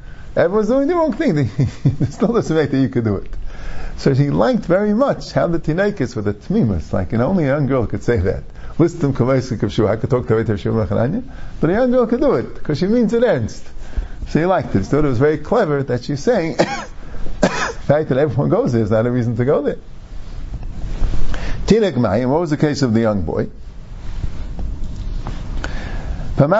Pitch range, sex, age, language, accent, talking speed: 120-185 Hz, male, 50-69, English, American, 195 wpm